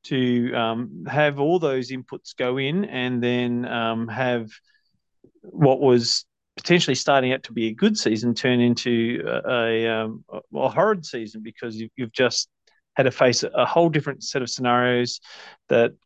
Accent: Australian